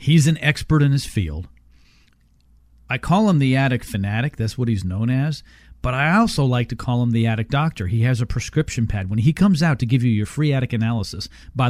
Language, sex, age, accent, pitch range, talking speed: English, male, 40-59, American, 100-140 Hz, 225 wpm